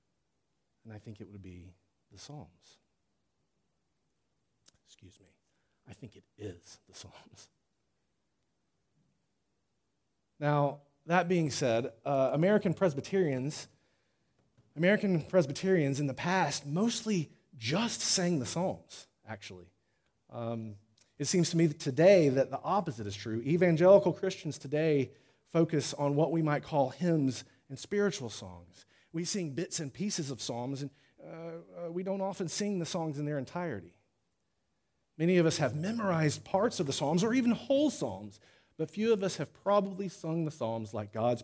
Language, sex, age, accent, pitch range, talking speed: English, male, 40-59, American, 125-180 Hz, 145 wpm